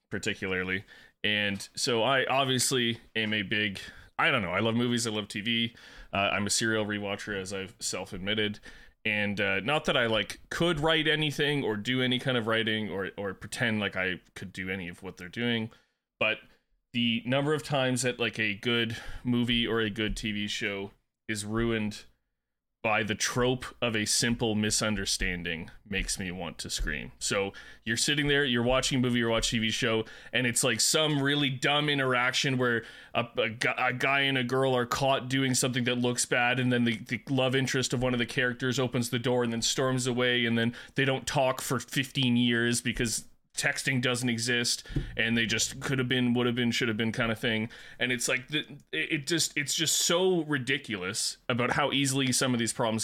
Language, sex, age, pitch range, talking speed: English, male, 20-39, 110-130 Hz, 200 wpm